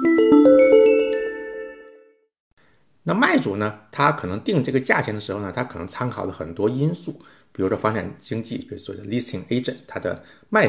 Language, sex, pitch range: Chinese, male, 110-170 Hz